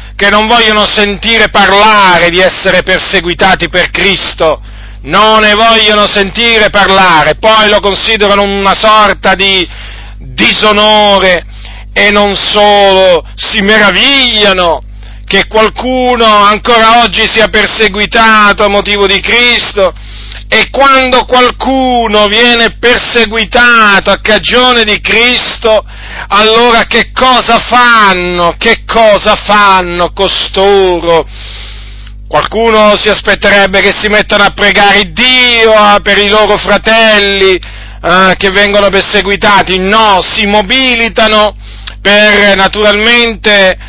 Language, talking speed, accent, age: Italian, 105 wpm, native, 40-59